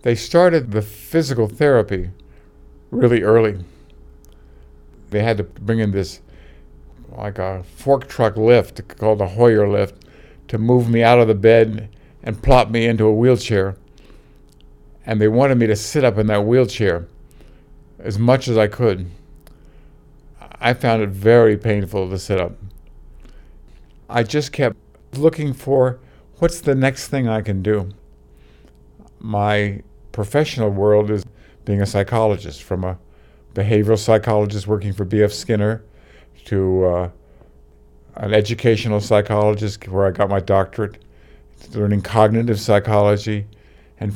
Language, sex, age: English, male, 50-69